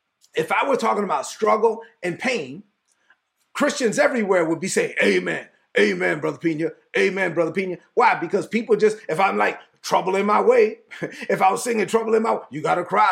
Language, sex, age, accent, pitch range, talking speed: English, male, 30-49, American, 205-320 Hz, 195 wpm